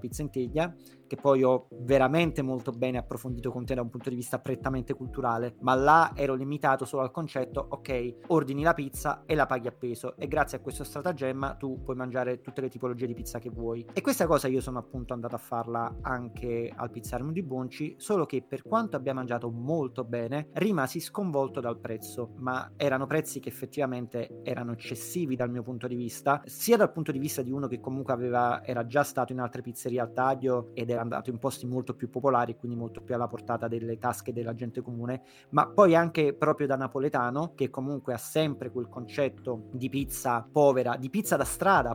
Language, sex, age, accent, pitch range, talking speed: Italian, male, 30-49, native, 125-150 Hz, 205 wpm